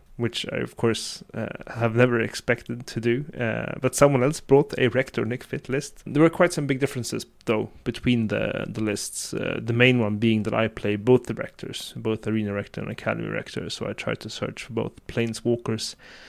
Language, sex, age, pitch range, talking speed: English, male, 30-49, 105-125 Hz, 205 wpm